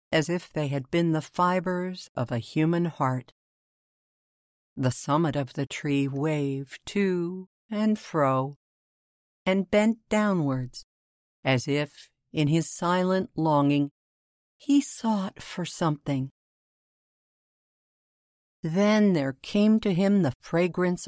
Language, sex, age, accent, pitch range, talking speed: English, female, 50-69, American, 135-190 Hz, 115 wpm